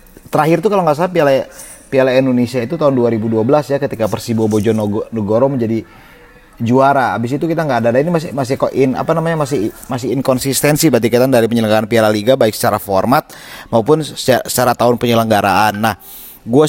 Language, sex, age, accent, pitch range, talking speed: Indonesian, male, 30-49, native, 100-125 Hz, 165 wpm